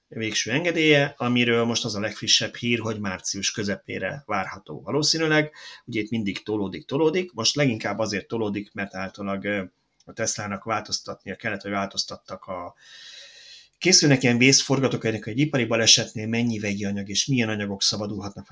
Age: 30-49